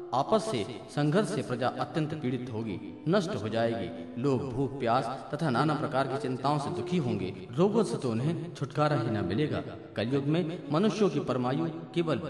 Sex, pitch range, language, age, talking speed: male, 125-165 Hz, Hindi, 40-59, 170 wpm